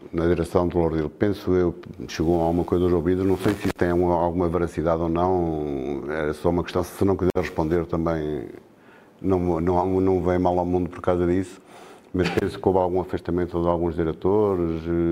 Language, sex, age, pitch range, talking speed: Portuguese, male, 50-69, 85-90 Hz, 200 wpm